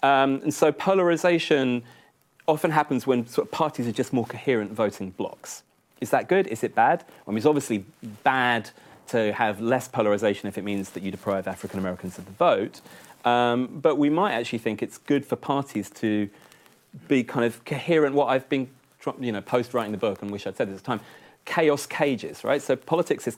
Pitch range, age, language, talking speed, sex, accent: 105-140 Hz, 30-49, English, 195 wpm, male, British